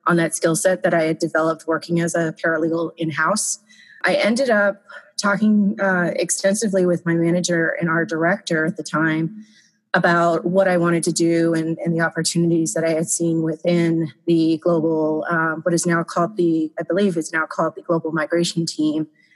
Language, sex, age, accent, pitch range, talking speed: English, female, 30-49, American, 165-195 Hz, 190 wpm